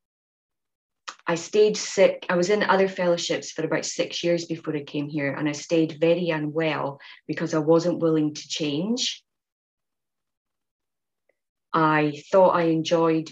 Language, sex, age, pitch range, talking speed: English, female, 30-49, 145-165 Hz, 140 wpm